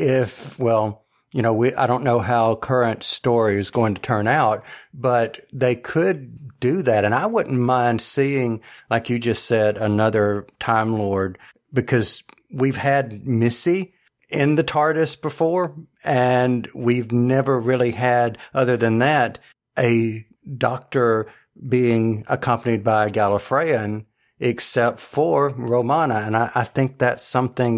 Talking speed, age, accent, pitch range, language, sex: 140 wpm, 50-69, American, 110-130 Hz, English, male